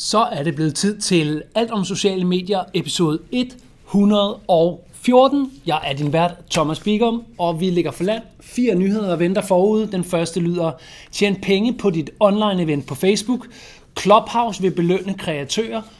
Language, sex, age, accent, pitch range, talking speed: Danish, male, 30-49, native, 165-220 Hz, 155 wpm